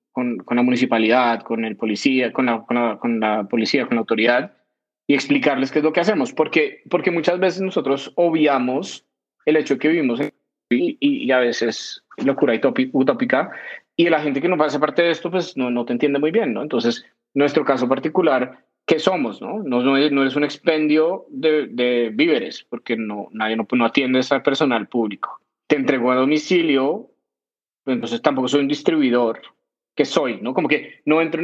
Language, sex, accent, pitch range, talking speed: Spanish, male, Colombian, 120-155 Hz, 200 wpm